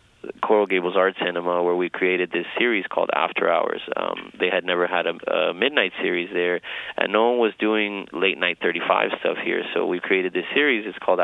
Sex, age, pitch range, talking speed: male, 20-39, 90-95 Hz, 210 wpm